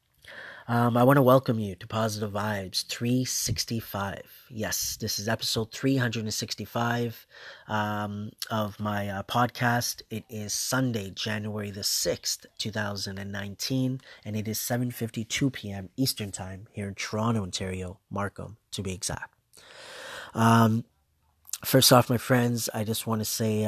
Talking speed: 130 wpm